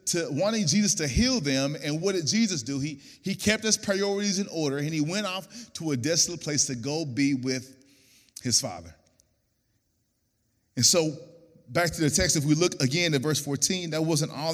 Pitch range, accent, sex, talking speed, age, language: 135-185 Hz, American, male, 200 wpm, 30-49, English